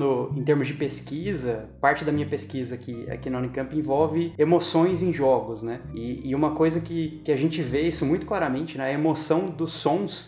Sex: male